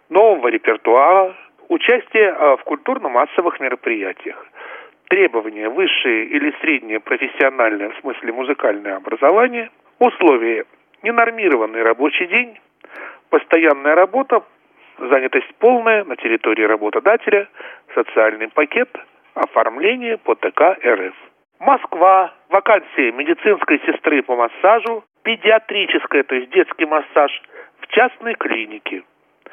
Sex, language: male, Russian